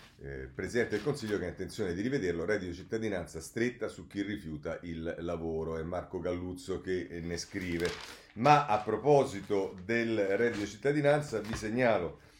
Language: Italian